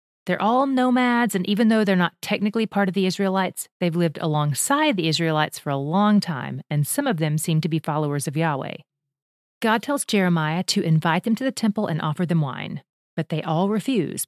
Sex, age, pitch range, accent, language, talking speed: female, 30-49, 160-220 Hz, American, English, 205 wpm